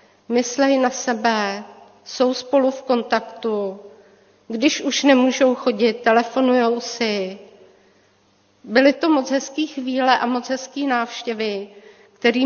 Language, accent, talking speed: Czech, native, 110 wpm